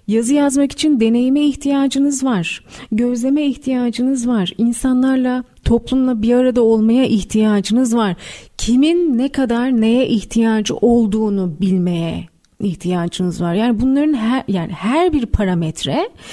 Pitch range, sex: 200-270 Hz, female